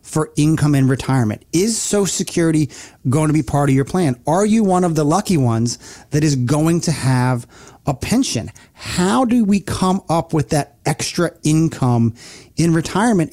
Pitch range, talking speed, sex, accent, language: 135-180 Hz, 175 wpm, male, American, English